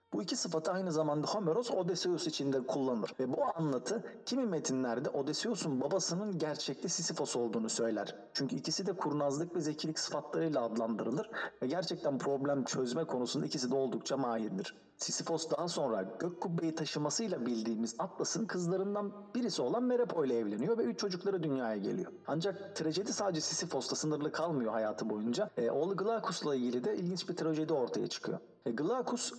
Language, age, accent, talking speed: Turkish, 40-59, native, 155 wpm